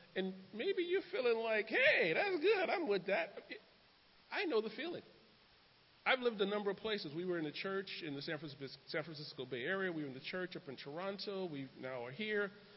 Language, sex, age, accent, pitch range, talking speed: English, male, 40-59, American, 155-200 Hz, 205 wpm